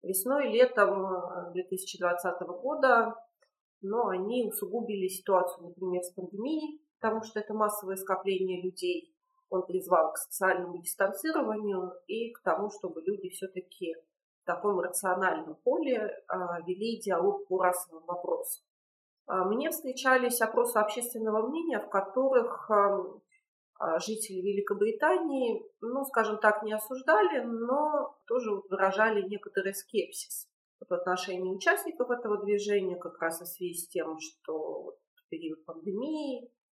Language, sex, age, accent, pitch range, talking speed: Russian, female, 40-59, native, 180-250 Hz, 120 wpm